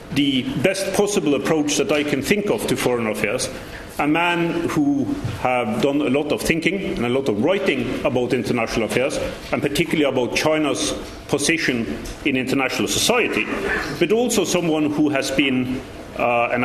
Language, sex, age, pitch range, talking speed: English, male, 40-59, 125-170 Hz, 160 wpm